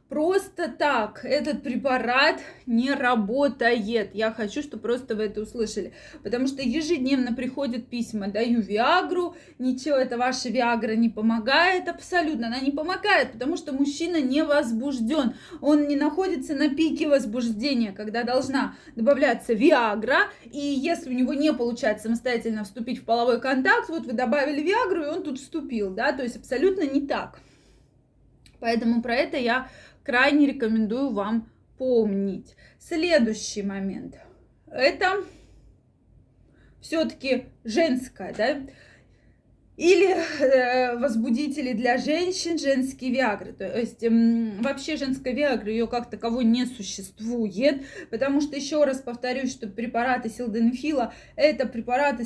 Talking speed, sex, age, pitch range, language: 125 wpm, female, 20-39, 230-285 Hz, Russian